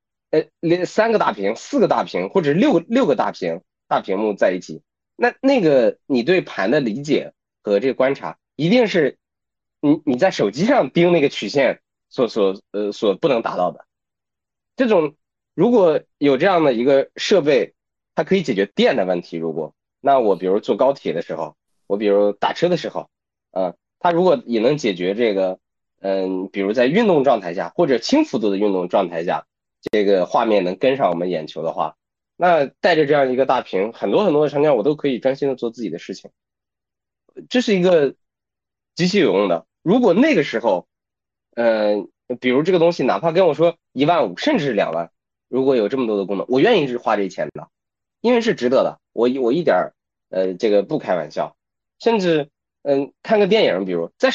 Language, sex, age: Chinese, male, 20-39